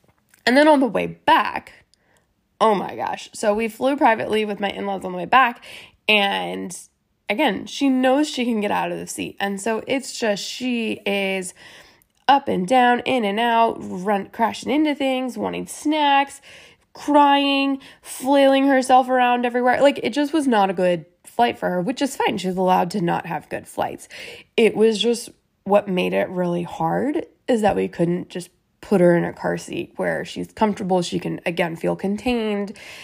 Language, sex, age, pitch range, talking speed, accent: English, female, 20-39, 185-250 Hz, 185 wpm, American